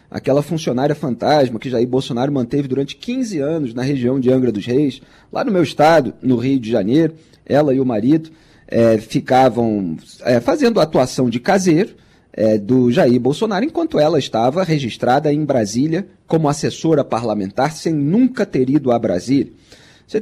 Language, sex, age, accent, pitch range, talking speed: Portuguese, male, 30-49, Brazilian, 130-190 Hz, 155 wpm